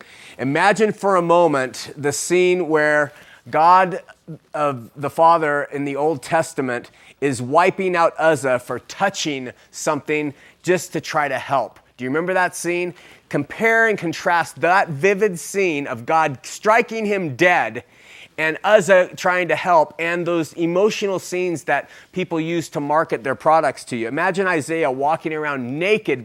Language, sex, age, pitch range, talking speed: English, male, 30-49, 145-180 Hz, 150 wpm